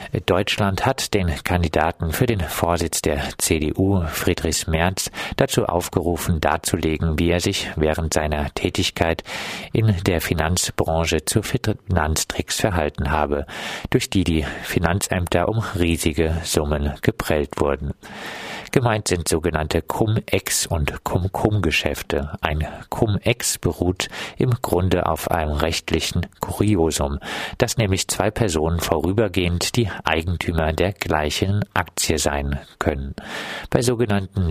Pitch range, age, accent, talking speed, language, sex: 80-105 Hz, 50-69, German, 115 wpm, German, male